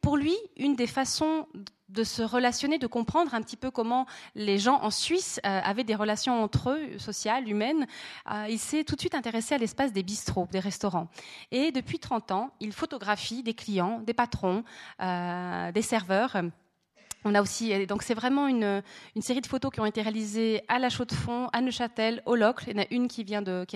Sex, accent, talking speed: female, French, 215 wpm